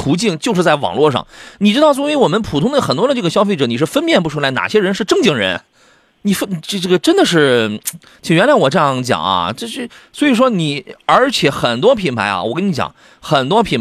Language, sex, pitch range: Chinese, male, 140-220 Hz